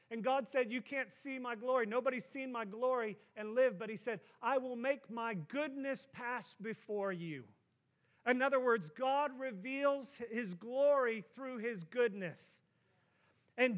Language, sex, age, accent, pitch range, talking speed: English, male, 40-59, American, 220-280 Hz, 155 wpm